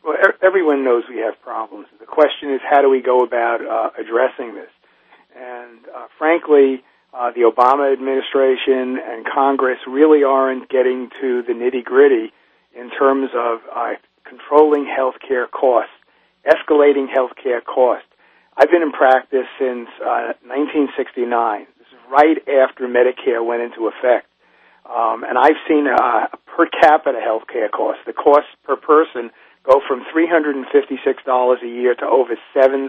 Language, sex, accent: English, male, American